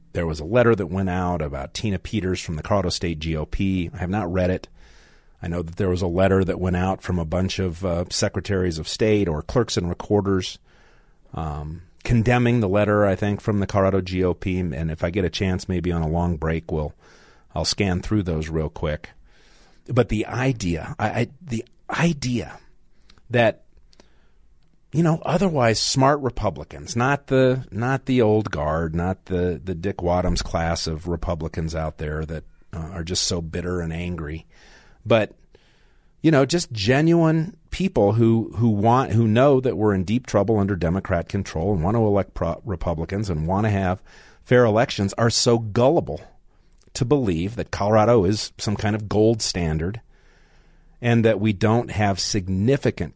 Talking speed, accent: 175 wpm, American